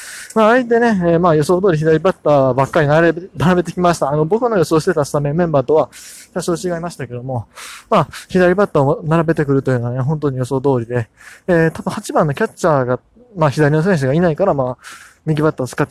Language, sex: Japanese, male